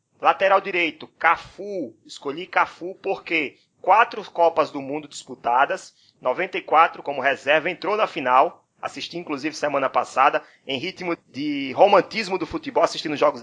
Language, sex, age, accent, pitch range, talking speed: Portuguese, male, 20-39, Brazilian, 145-175 Hz, 130 wpm